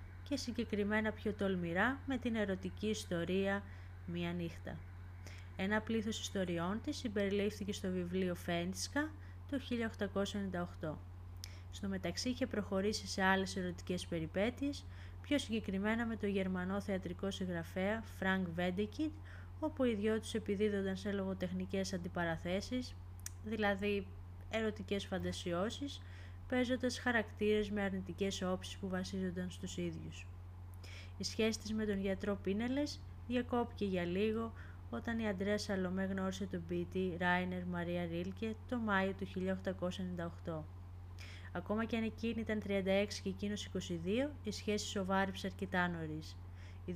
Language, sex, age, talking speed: Greek, female, 20-39, 125 wpm